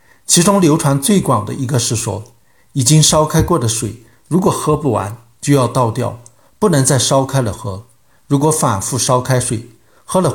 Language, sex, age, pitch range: Chinese, male, 60-79, 115-150 Hz